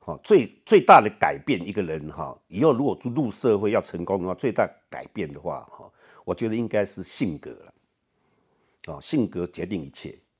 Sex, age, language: male, 50-69, Chinese